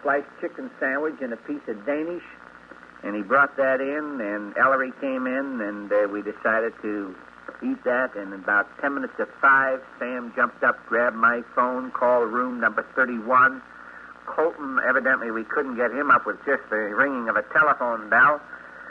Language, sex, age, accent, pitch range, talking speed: English, male, 60-79, American, 115-140 Hz, 170 wpm